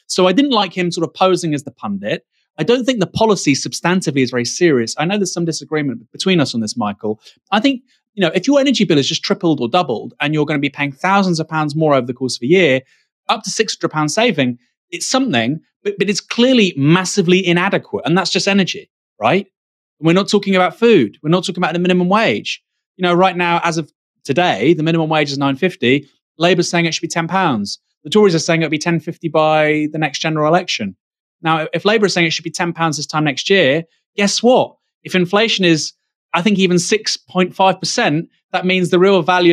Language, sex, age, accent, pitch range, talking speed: English, male, 30-49, British, 160-215 Hz, 225 wpm